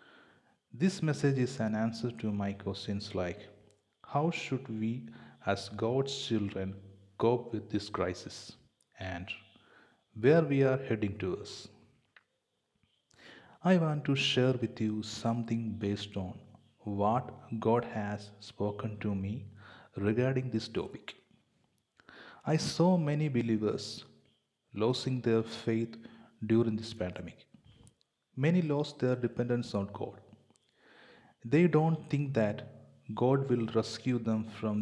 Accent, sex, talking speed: native, male, 120 wpm